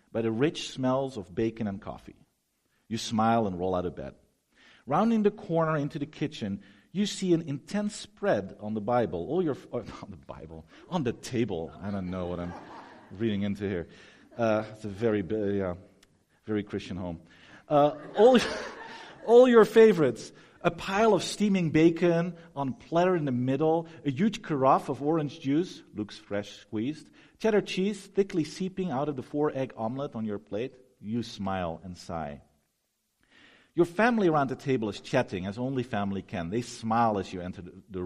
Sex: male